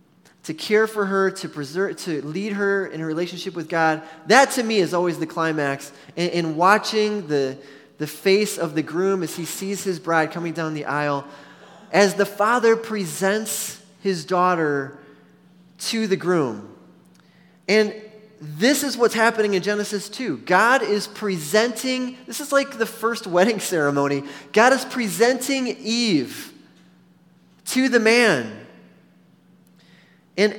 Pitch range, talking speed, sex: 165-210 Hz, 145 wpm, male